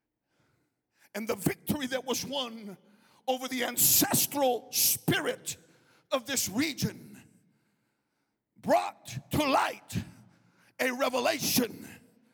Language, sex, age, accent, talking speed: English, male, 50-69, American, 90 wpm